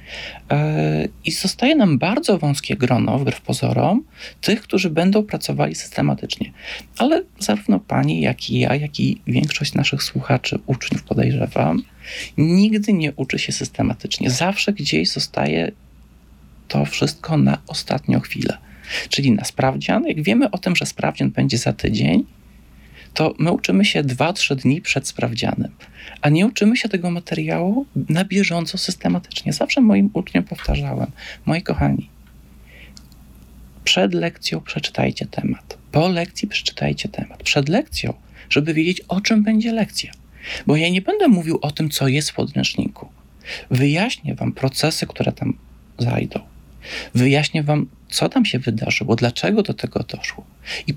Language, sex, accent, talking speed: Polish, male, native, 140 wpm